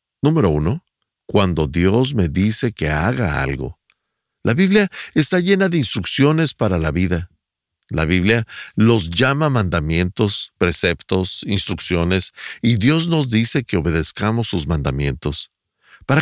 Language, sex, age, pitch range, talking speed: Spanish, male, 50-69, 90-140 Hz, 125 wpm